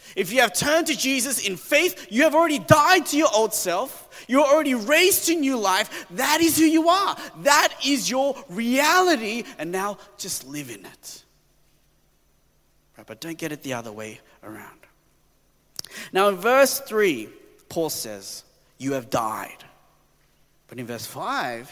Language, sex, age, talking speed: English, male, 30-49, 160 wpm